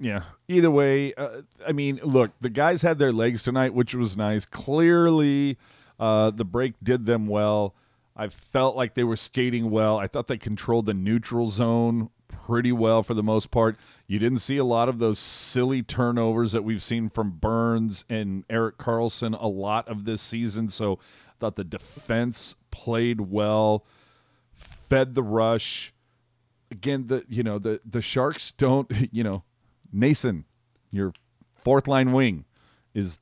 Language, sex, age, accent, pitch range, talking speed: English, male, 40-59, American, 105-125 Hz, 165 wpm